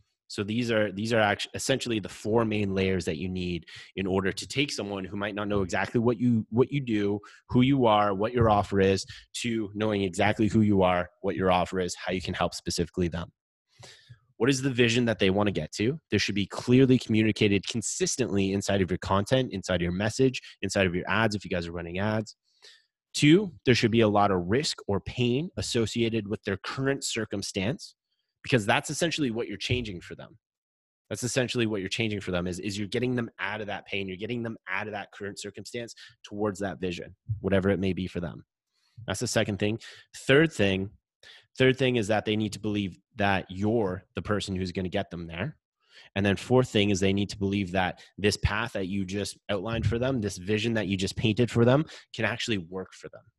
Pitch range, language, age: 95-115 Hz, English, 30-49